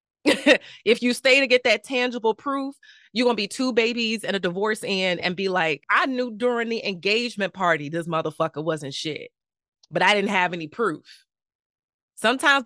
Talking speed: 180 wpm